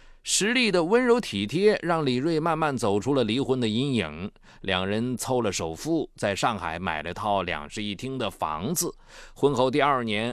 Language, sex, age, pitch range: Chinese, male, 20-39, 105-170 Hz